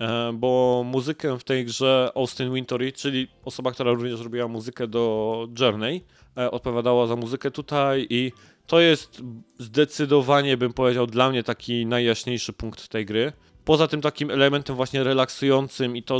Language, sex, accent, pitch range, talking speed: Polish, male, native, 110-130 Hz, 155 wpm